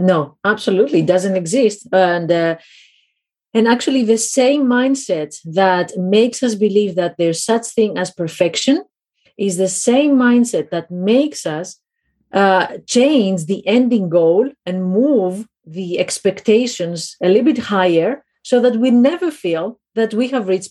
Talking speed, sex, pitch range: 150 wpm, female, 175-240 Hz